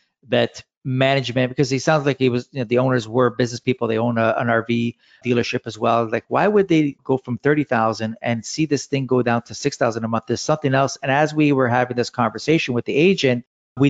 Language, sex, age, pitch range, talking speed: English, male, 40-59, 120-145 Hz, 230 wpm